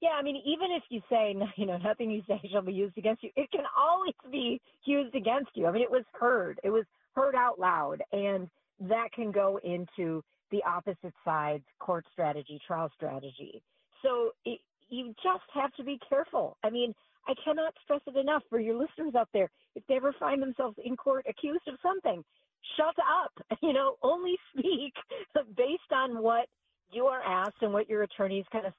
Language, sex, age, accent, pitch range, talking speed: English, female, 40-59, American, 175-255 Hz, 195 wpm